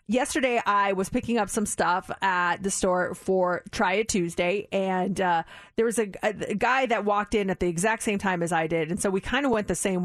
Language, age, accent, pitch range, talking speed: English, 30-49, American, 180-220 Hz, 240 wpm